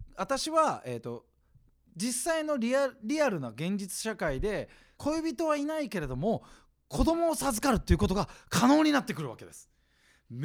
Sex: male